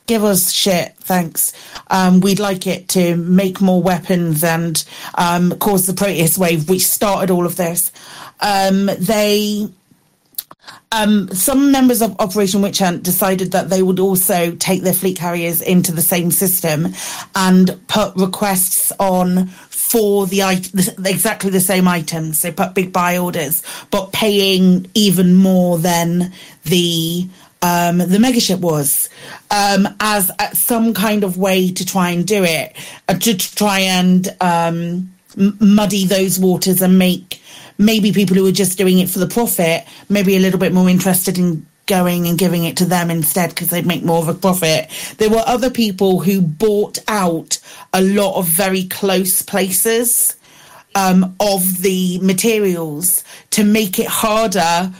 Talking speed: 160 wpm